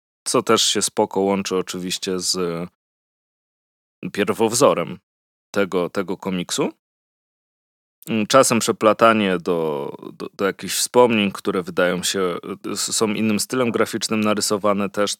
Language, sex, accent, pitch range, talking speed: Polish, male, native, 95-110 Hz, 105 wpm